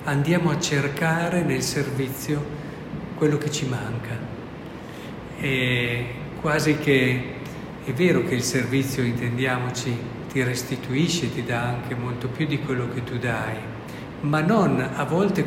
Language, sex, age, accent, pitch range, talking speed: Italian, male, 50-69, native, 125-155 Hz, 130 wpm